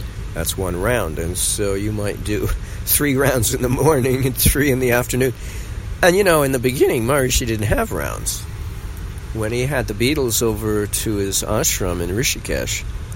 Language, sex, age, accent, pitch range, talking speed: English, male, 50-69, American, 90-110 Hz, 180 wpm